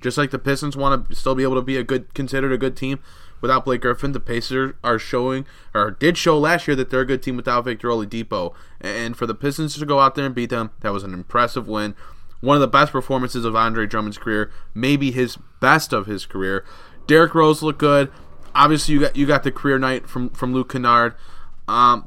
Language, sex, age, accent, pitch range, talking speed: English, male, 20-39, American, 115-145 Hz, 230 wpm